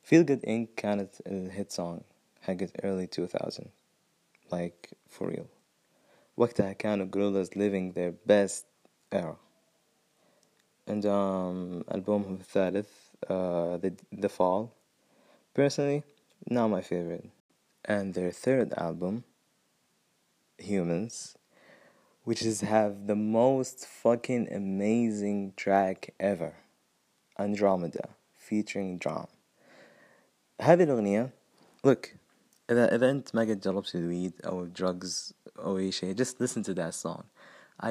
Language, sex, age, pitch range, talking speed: Arabic, male, 20-39, 95-110 Hz, 110 wpm